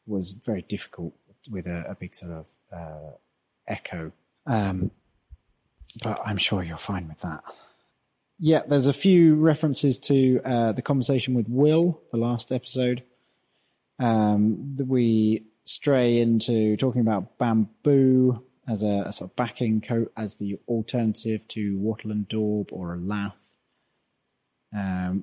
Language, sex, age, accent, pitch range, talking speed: English, male, 30-49, British, 100-125 Hz, 135 wpm